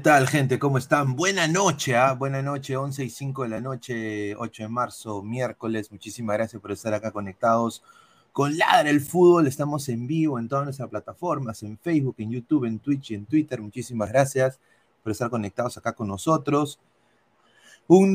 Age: 30-49